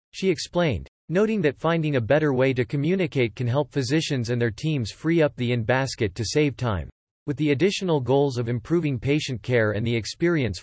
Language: English